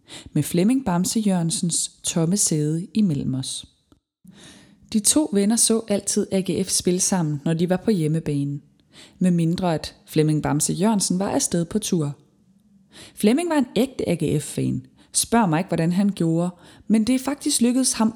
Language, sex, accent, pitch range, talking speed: Danish, female, native, 155-215 Hz, 160 wpm